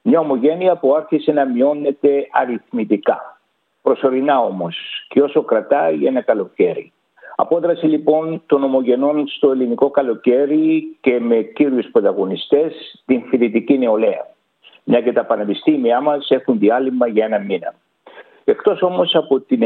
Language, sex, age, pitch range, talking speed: Greek, male, 60-79, 130-180 Hz, 130 wpm